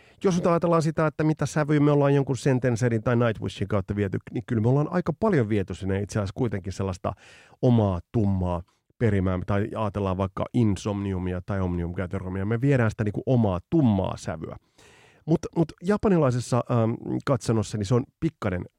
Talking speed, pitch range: 150 wpm, 100-140 Hz